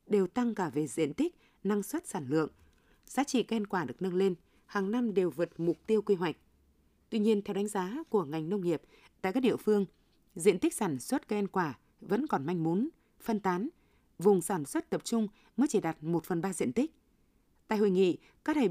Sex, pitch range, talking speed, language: female, 180-230 Hz, 220 wpm, Vietnamese